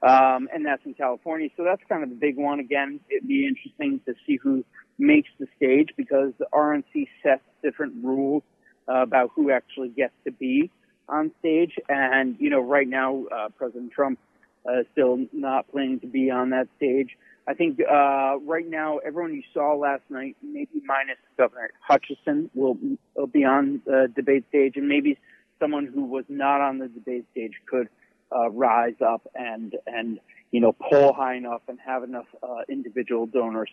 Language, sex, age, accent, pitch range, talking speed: English, male, 40-59, American, 130-200 Hz, 185 wpm